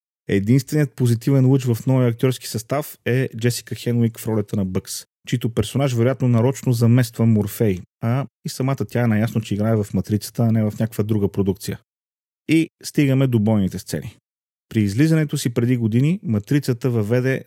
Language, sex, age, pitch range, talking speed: Bulgarian, male, 30-49, 105-125 Hz, 165 wpm